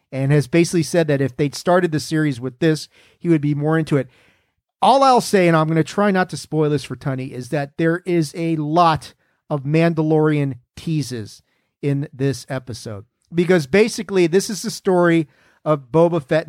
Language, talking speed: English, 195 wpm